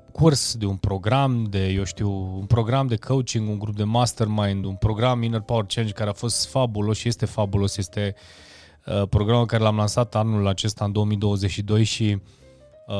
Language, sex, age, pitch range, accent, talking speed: Romanian, male, 20-39, 100-115 Hz, native, 170 wpm